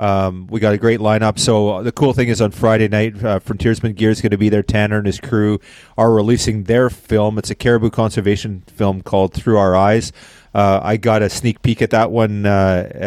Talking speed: 225 wpm